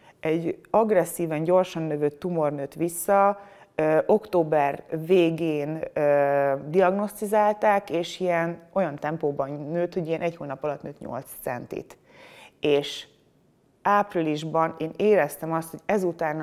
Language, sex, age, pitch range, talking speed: Hungarian, female, 30-49, 150-180 Hz, 115 wpm